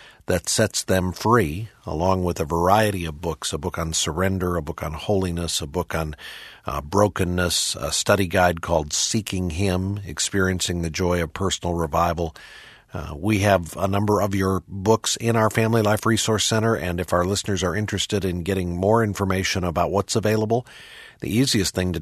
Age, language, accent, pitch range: 50-69, English, American, 90-110 Hz